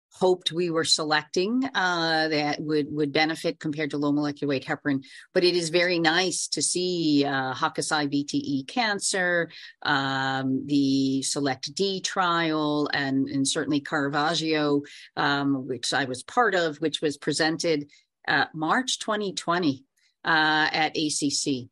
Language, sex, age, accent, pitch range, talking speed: English, female, 40-59, American, 145-175 Hz, 135 wpm